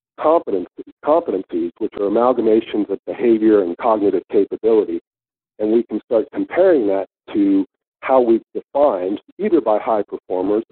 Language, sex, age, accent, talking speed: English, male, 50-69, American, 135 wpm